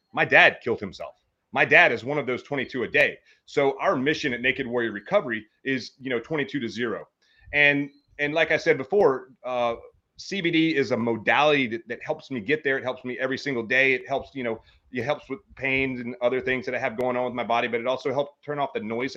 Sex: male